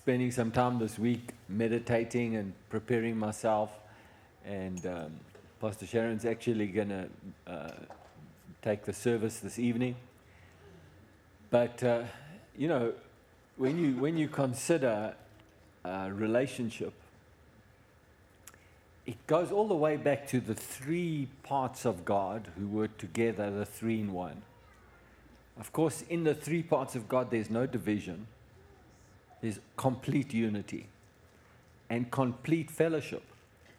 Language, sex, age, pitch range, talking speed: English, male, 50-69, 105-130 Hz, 125 wpm